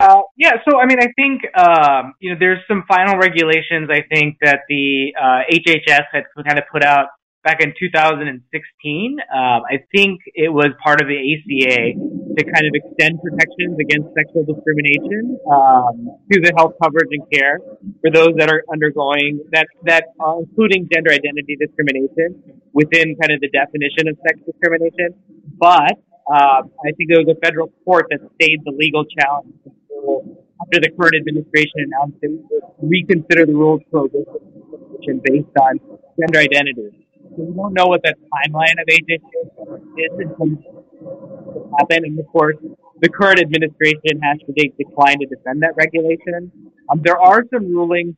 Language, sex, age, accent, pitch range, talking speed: English, male, 30-49, American, 150-175 Hz, 160 wpm